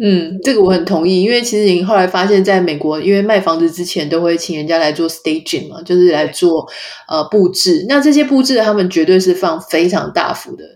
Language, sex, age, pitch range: Chinese, female, 20-39, 175-275 Hz